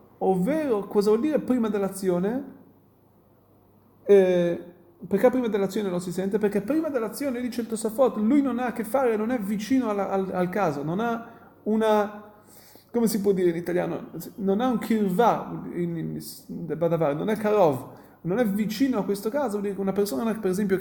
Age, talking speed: 30-49, 180 wpm